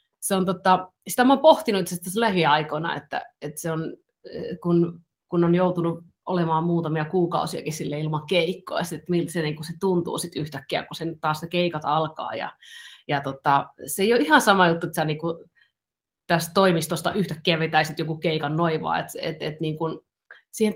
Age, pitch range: 30-49, 155-185 Hz